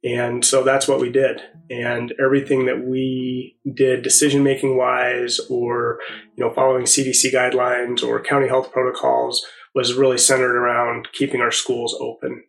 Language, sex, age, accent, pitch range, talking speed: English, male, 30-49, American, 125-140 Hz, 155 wpm